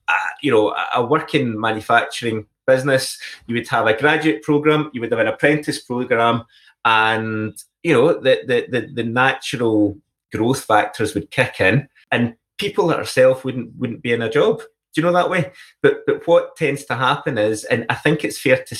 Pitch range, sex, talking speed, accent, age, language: 110-155 Hz, male, 185 wpm, British, 20-39, English